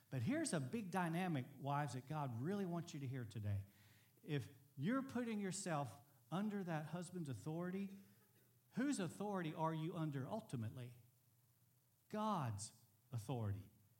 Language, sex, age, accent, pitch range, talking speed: English, male, 50-69, American, 125-190 Hz, 130 wpm